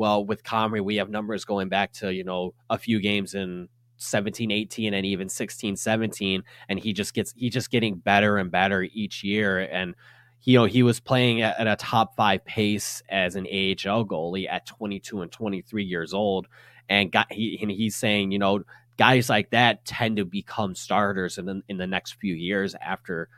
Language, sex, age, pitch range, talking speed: English, male, 20-39, 100-120 Hz, 205 wpm